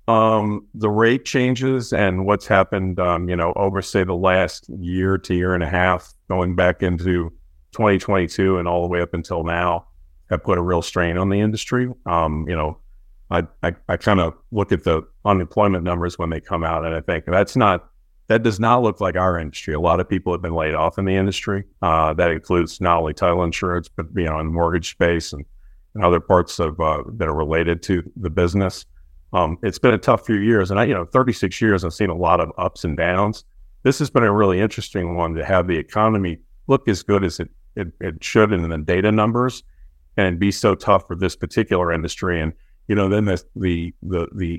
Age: 50-69